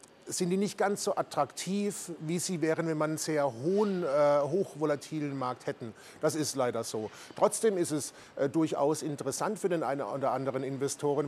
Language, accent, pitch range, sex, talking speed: German, German, 150-180 Hz, male, 170 wpm